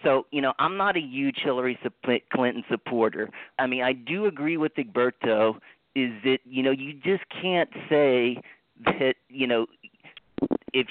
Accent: American